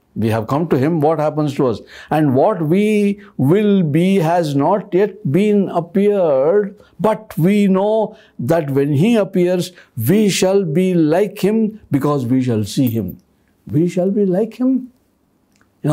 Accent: native